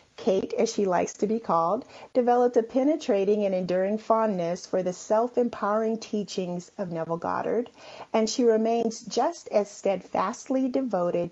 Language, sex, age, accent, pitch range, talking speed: English, female, 40-59, American, 185-235 Hz, 145 wpm